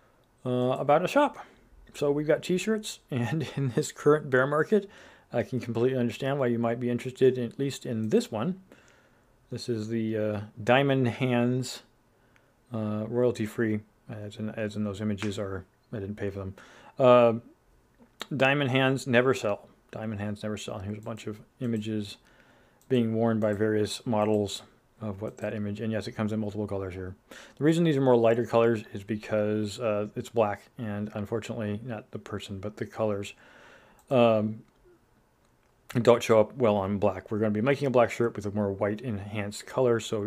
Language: English